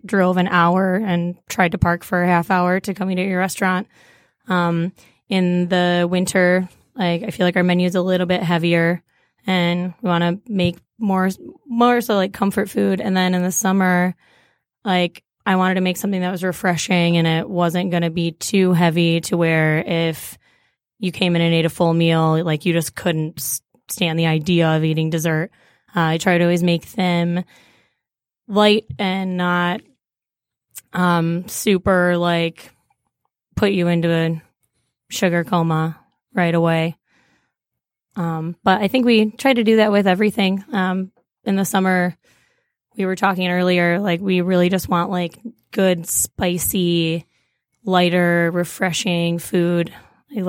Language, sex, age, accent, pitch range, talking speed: English, female, 20-39, American, 170-190 Hz, 165 wpm